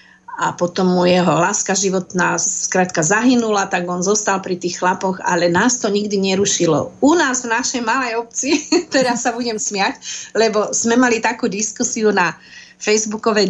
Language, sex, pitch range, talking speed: Slovak, female, 210-255 Hz, 155 wpm